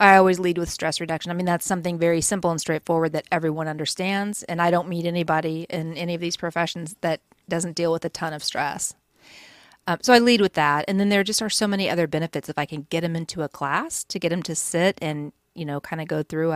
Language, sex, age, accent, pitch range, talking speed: English, female, 40-59, American, 155-180 Hz, 255 wpm